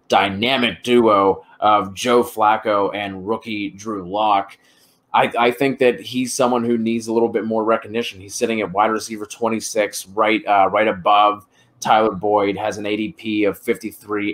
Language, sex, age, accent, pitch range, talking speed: English, male, 20-39, American, 100-115 Hz, 165 wpm